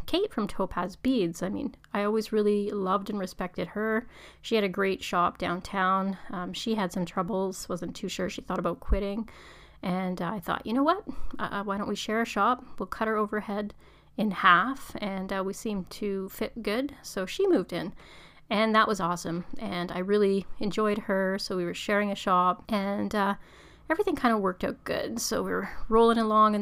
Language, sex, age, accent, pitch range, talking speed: English, female, 30-49, American, 190-225 Hz, 205 wpm